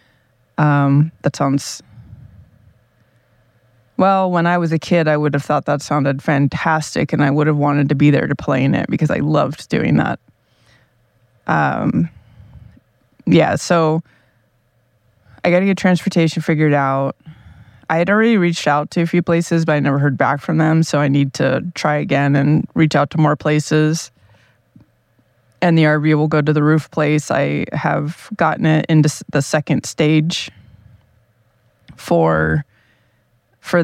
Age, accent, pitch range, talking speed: 20-39, American, 120-155 Hz, 160 wpm